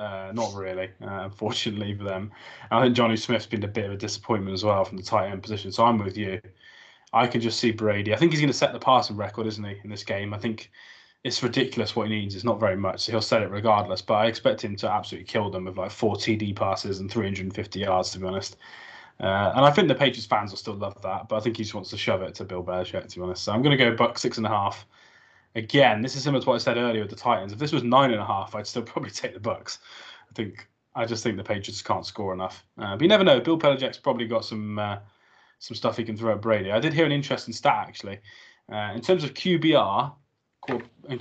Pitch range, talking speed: 105-120 Hz, 270 wpm